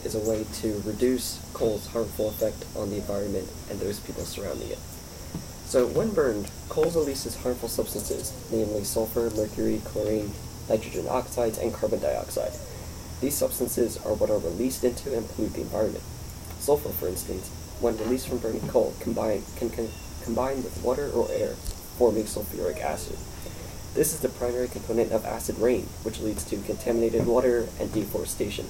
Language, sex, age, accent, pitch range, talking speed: English, male, 20-39, American, 100-120 Hz, 160 wpm